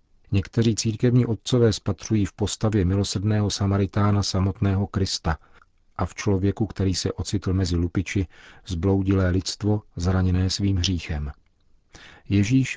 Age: 40-59